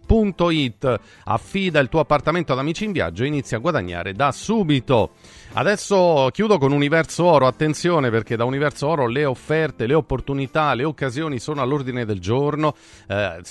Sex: male